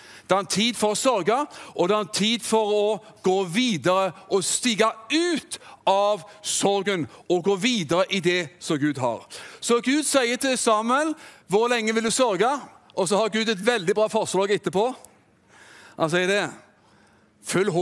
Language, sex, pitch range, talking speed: English, male, 185-235 Hz, 165 wpm